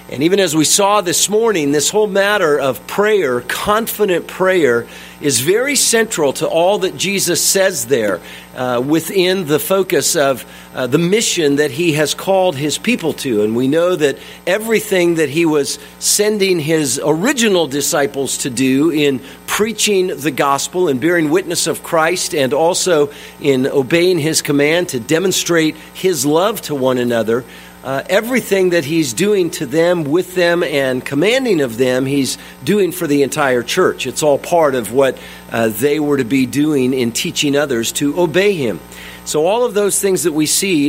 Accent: American